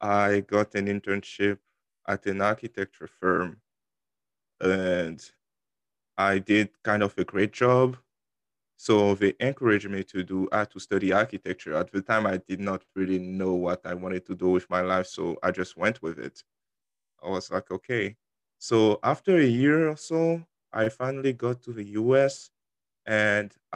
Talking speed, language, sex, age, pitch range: 165 wpm, English, male, 20-39, 95-115 Hz